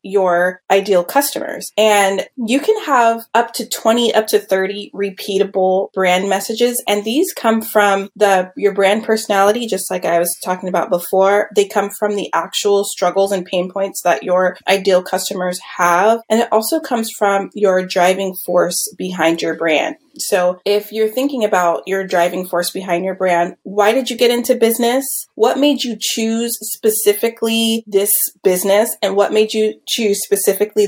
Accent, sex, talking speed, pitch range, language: American, female, 165 wpm, 185-225 Hz, English